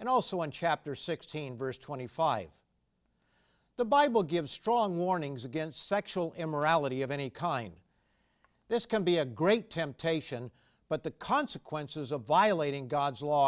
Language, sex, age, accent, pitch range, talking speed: English, male, 50-69, American, 140-175 Hz, 140 wpm